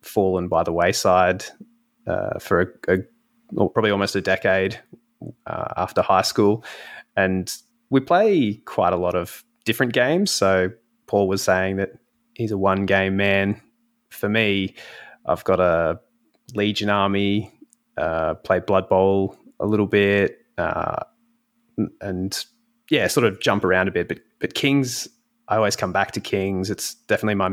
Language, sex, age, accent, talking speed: English, male, 20-39, Australian, 155 wpm